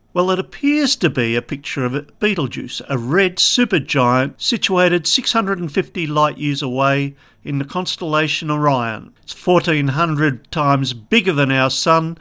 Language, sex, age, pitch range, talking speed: English, male, 50-69, 135-175 Hz, 140 wpm